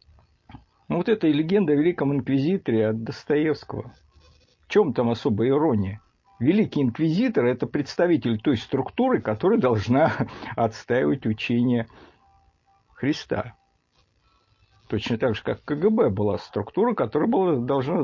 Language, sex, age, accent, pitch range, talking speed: Russian, male, 50-69, native, 100-145 Hz, 110 wpm